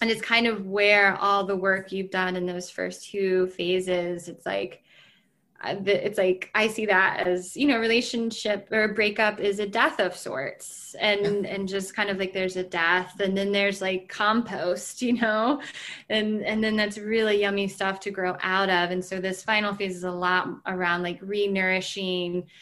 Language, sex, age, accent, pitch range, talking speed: English, female, 20-39, American, 185-215 Hz, 190 wpm